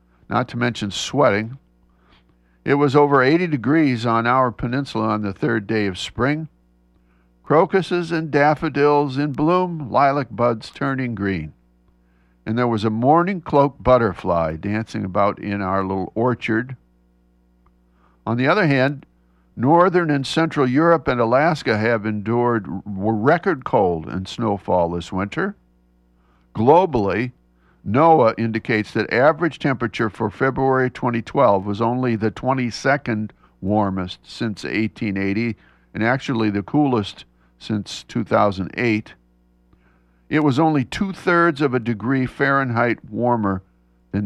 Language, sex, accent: English, male, American